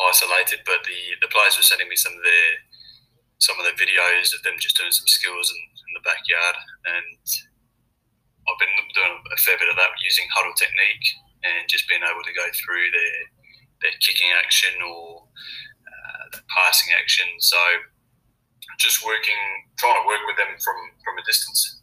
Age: 20-39